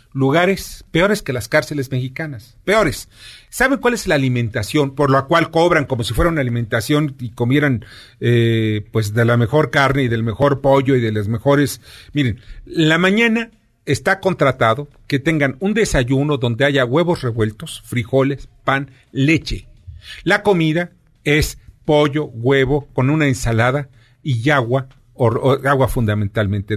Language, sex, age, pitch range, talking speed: Spanish, male, 40-59, 115-150 Hz, 150 wpm